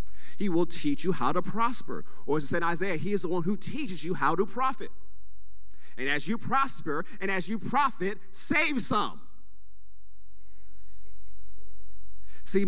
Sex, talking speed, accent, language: male, 160 wpm, American, English